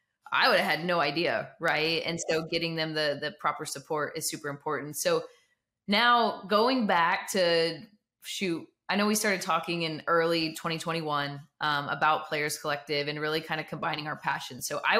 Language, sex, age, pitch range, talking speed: English, female, 20-39, 150-175 Hz, 180 wpm